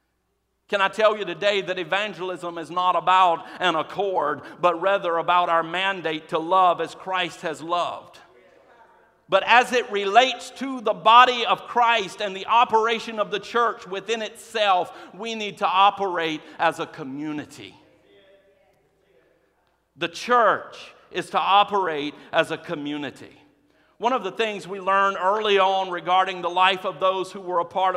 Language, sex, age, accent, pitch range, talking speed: English, male, 50-69, American, 175-195 Hz, 155 wpm